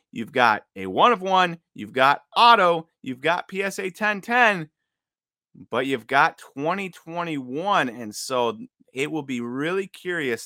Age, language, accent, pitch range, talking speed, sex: 30-49, English, American, 115-155 Hz, 140 wpm, male